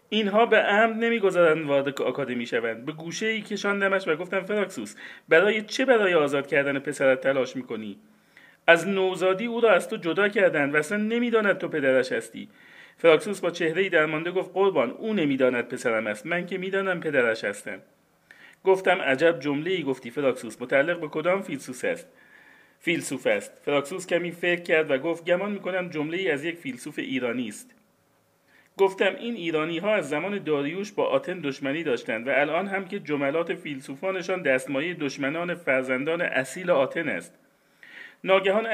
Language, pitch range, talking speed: Persian, 145-195 Hz, 160 wpm